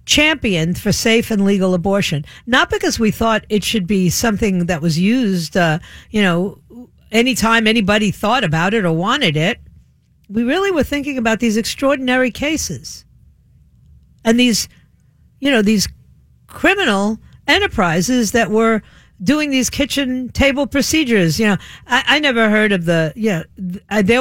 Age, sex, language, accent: 50-69, female, English, American